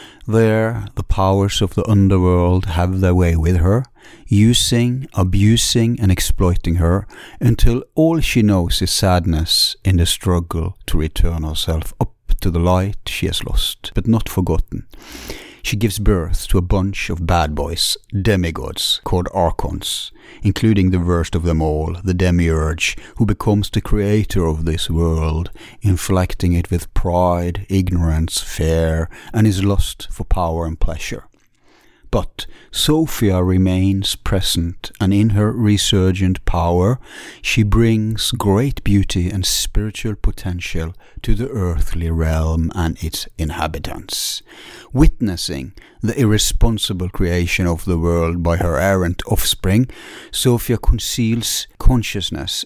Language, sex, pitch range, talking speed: English, male, 85-105 Hz, 130 wpm